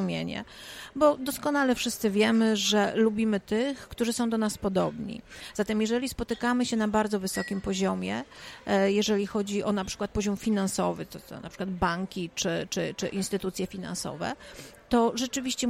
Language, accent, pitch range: Polish, native, 195-240 Hz